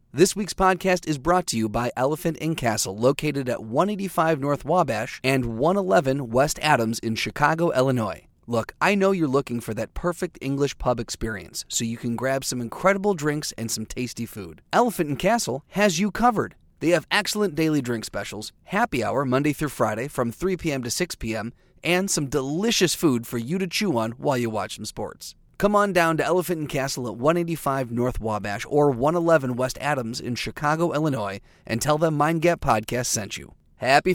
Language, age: English, 30-49